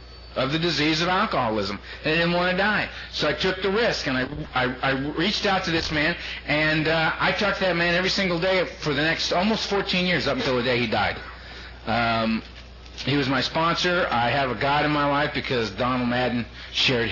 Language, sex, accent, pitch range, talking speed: English, male, American, 115-145 Hz, 215 wpm